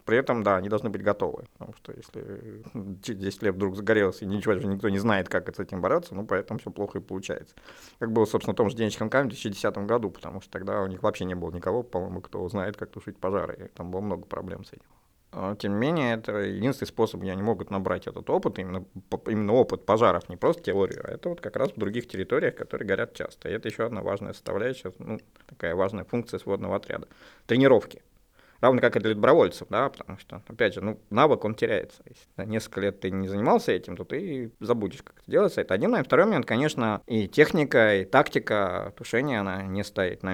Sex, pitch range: male, 95-115 Hz